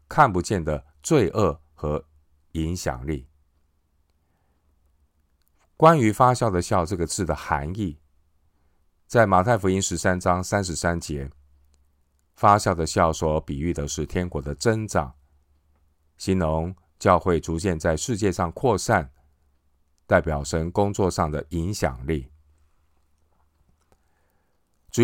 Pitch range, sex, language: 75-95 Hz, male, Chinese